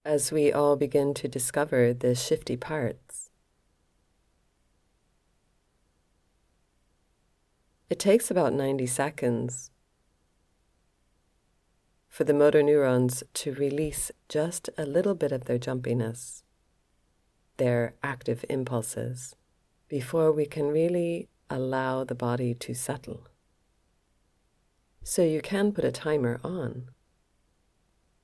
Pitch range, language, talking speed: 120-145 Hz, English, 100 wpm